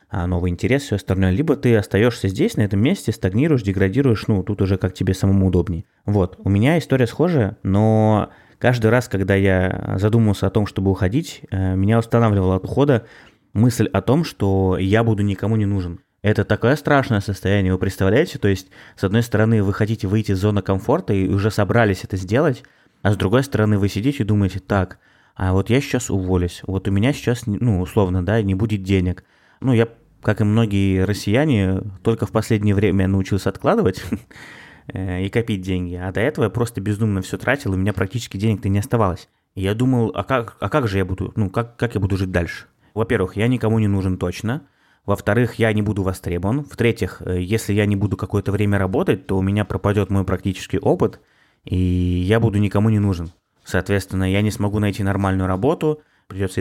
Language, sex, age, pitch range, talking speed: Russian, male, 20-39, 95-115 Hz, 195 wpm